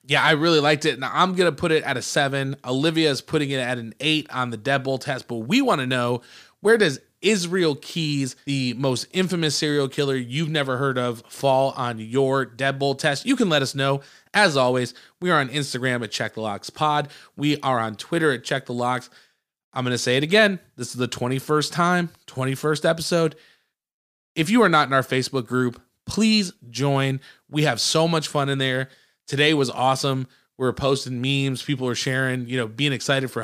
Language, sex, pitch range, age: English, male, 125-150 Hz, 20-39